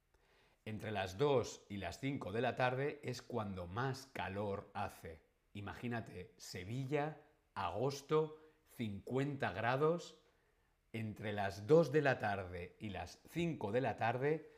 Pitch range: 95-140 Hz